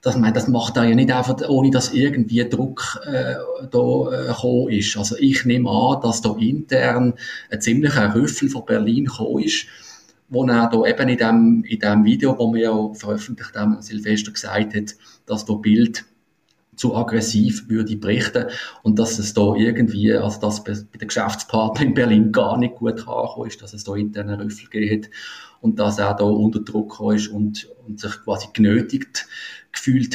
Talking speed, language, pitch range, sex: 180 wpm, German, 105-125 Hz, male